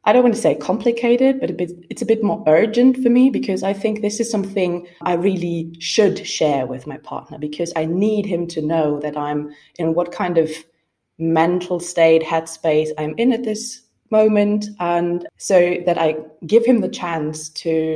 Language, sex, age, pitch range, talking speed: English, female, 20-39, 160-195 Hz, 195 wpm